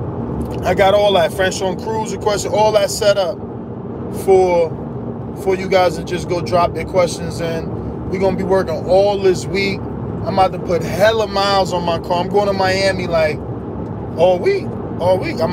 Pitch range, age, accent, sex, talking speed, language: 160-195 Hz, 20-39, American, male, 195 wpm, English